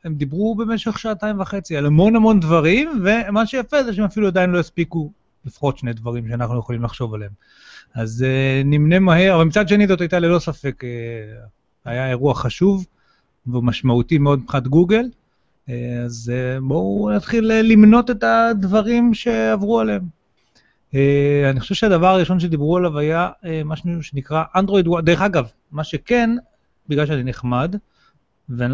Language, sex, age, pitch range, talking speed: Hebrew, male, 30-49, 135-185 Hz, 145 wpm